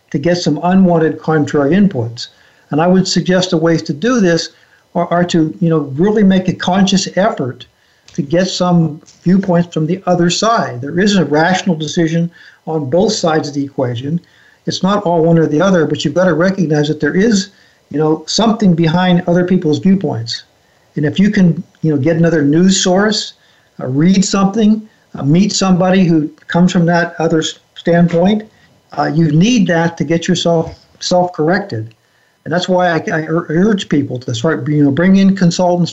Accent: American